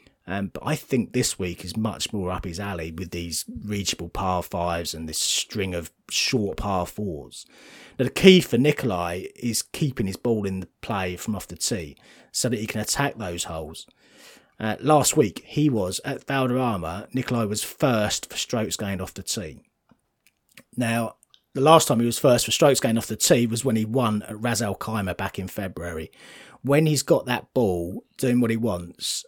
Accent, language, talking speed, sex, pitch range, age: British, English, 195 wpm, male, 95-130 Hz, 30-49